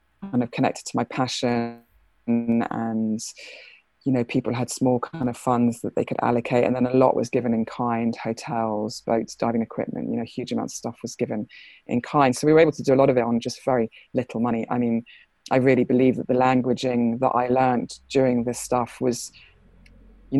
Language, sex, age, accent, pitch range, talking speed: English, female, 20-39, British, 120-130 Hz, 210 wpm